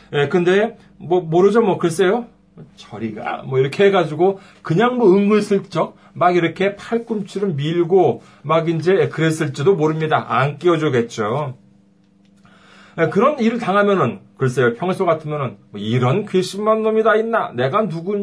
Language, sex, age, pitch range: Korean, male, 40-59, 145-220 Hz